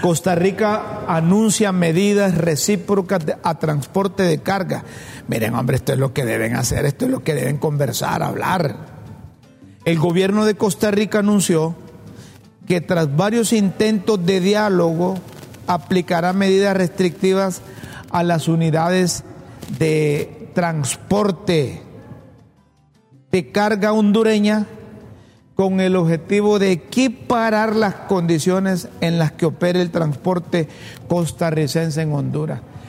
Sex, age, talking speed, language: male, 50-69, 115 wpm, Spanish